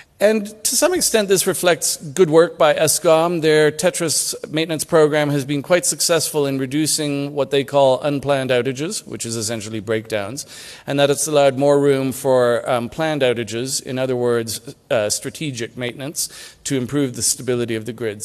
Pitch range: 125-155 Hz